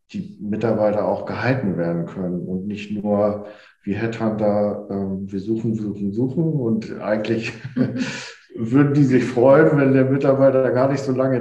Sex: male